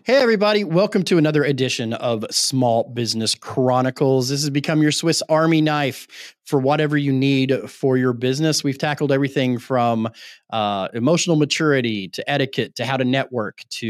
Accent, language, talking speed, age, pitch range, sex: American, English, 165 wpm, 30-49, 115-150 Hz, male